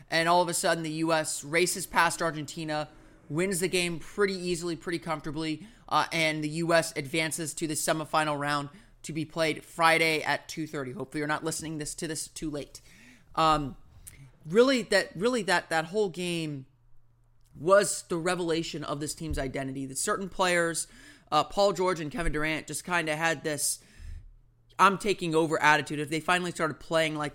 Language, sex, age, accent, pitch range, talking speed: English, male, 30-49, American, 150-170 Hz, 180 wpm